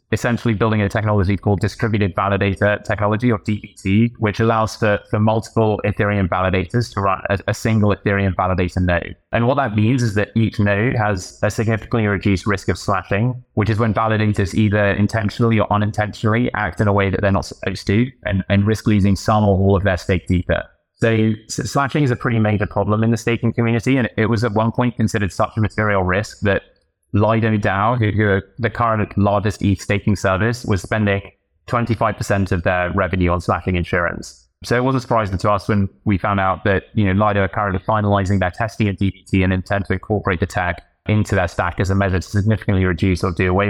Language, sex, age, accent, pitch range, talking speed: English, male, 20-39, British, 95-110 Hz, 205 wpm